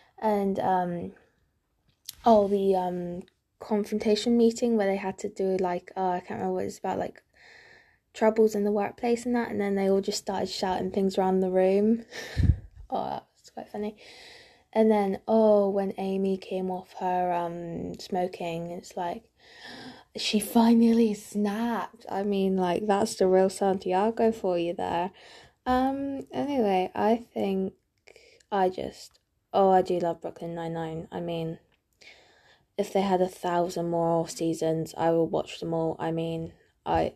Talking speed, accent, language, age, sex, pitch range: 160 wpm, British, English, 10-29, female, 175-215 Hz